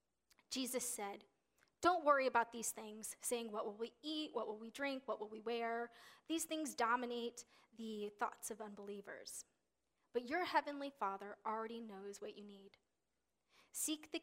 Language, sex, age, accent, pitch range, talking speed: English, female, 10-29, American, 215-280 Hz, 160 wpm